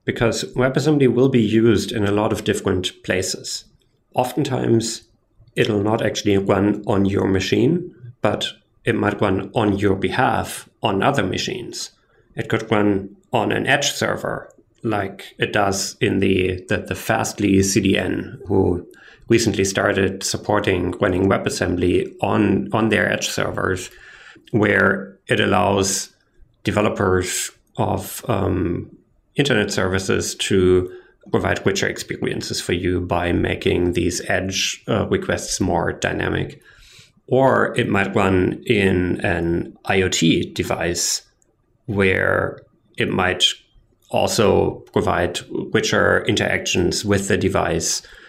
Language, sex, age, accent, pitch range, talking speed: English, male, 30-49, German, 95-110 Hz, 120 wpm